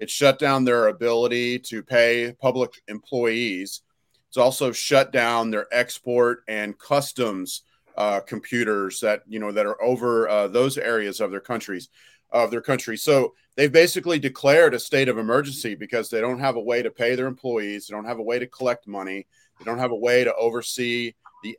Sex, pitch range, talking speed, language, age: male, 105-130 Hz, 190 wpm, English, 30-49